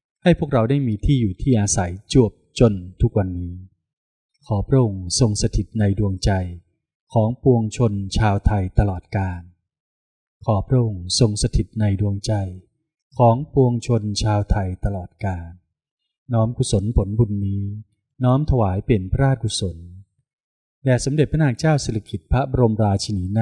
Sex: male